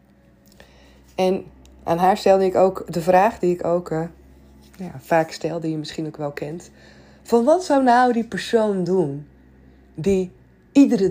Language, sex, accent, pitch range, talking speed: Dutch, female, Dutch, 145-200 Hz, 160 wpm